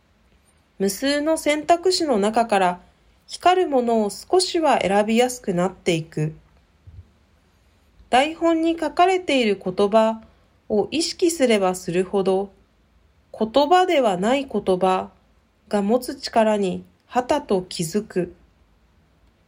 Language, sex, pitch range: Japanese, female, 175-255 Hz